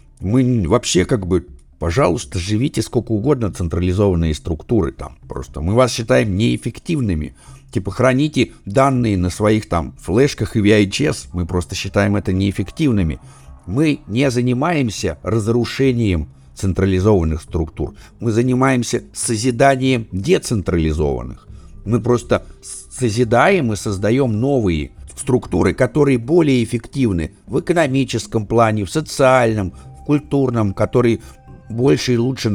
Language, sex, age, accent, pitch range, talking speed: Russian, male, 60-79, native, 90-125 Hz, 110 wpm